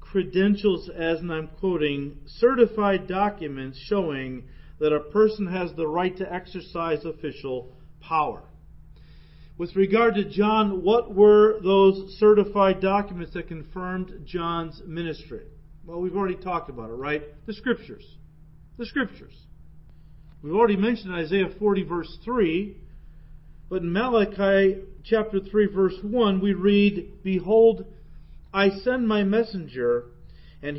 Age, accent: 40-59, American